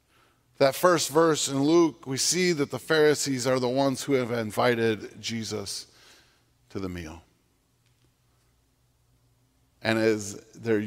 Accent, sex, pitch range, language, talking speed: American, male, 115-140 Hz, English, 125 wpm